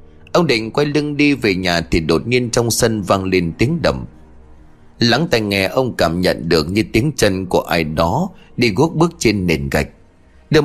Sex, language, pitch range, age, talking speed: male, Vietnamese, 90-145 Hz, 30-49, 205 wpm